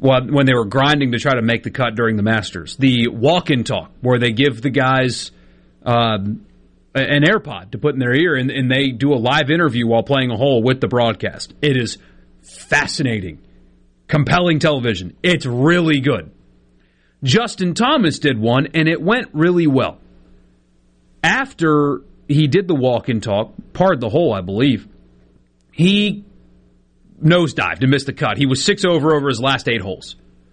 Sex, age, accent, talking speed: male, 30-49, American, 170 wpm